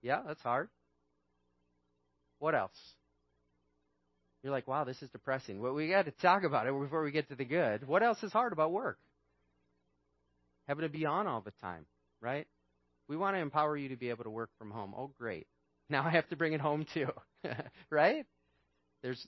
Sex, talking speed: male, 195 wpm